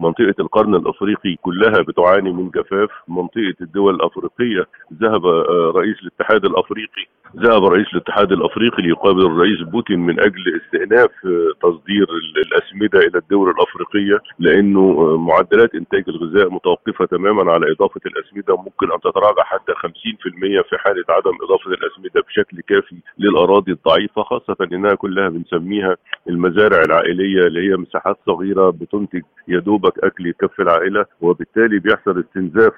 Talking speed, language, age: 130 wpm, Arabic, 50-69